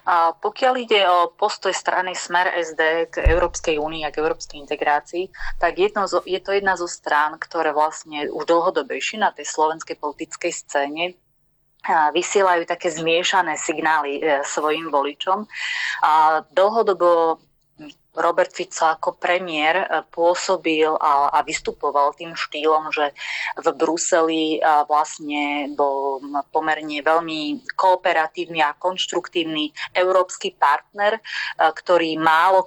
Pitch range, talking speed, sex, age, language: 155-180 Hz, 120 wpm, female, 30-49, Slovak